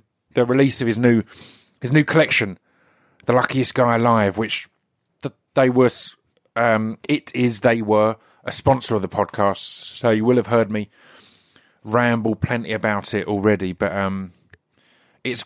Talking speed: 150 wpm